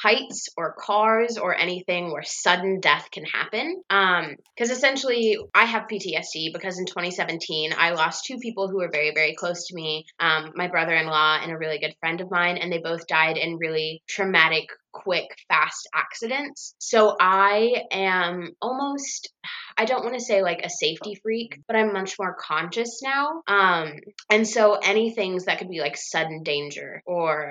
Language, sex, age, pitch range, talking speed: English, female, 20-39, 160-205 Hz, 175 wpm